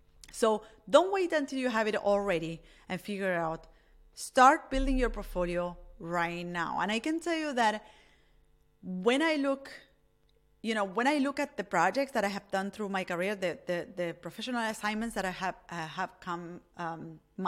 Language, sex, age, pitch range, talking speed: English, female, 30-49, 175-235 Hz, 185 wpm